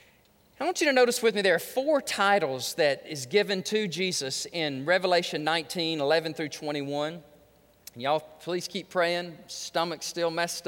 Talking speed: 165 wpm